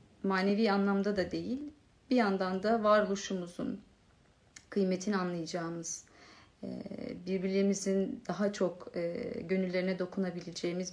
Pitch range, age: 180-230 Hz, 40-59